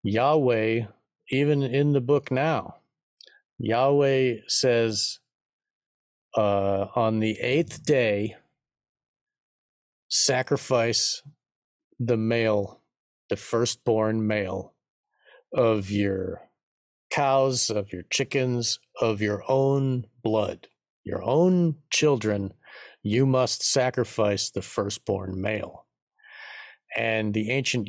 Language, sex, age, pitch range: English, male, 50-69, 105-125 Hz